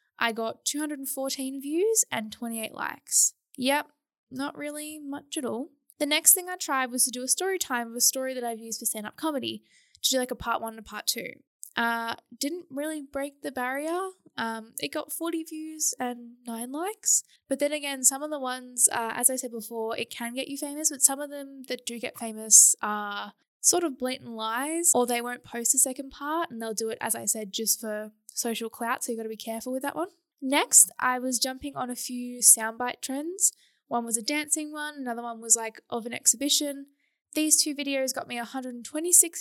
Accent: Australian